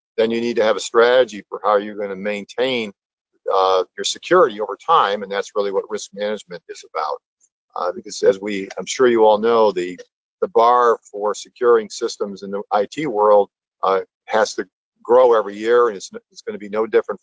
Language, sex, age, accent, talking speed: English, male, 50-69, American, 205 wpm